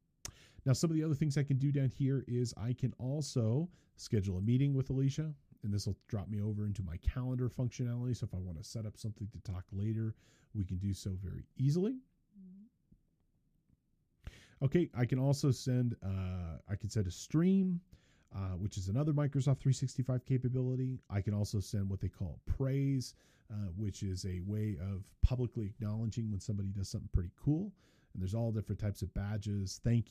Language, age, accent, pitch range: English, 40-59, American, 100-130 Hz